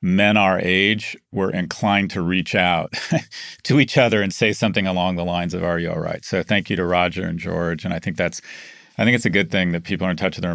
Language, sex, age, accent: English, male, 40-59, American